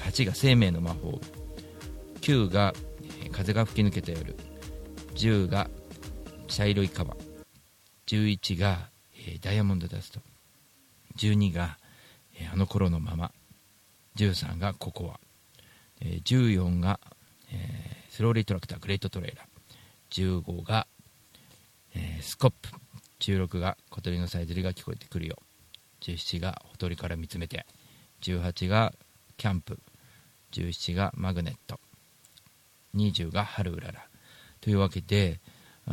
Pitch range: 90-120 Hz